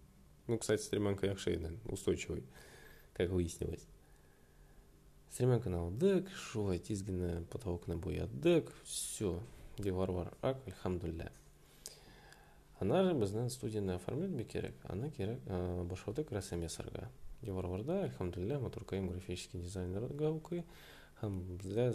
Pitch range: 90-120 Hz